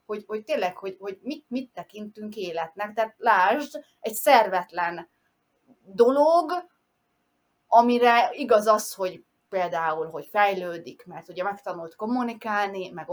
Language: Hungarian